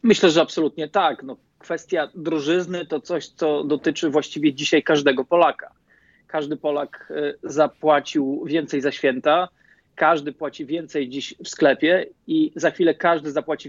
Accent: native